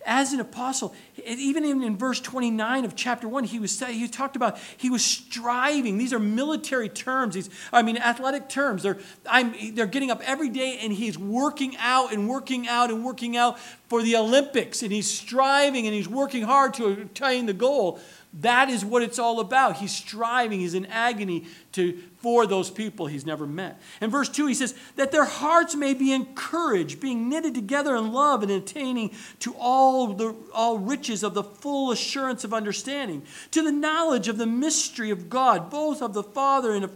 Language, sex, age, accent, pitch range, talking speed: English, male, 40-59, American, 230-290 Hz, 195 wpm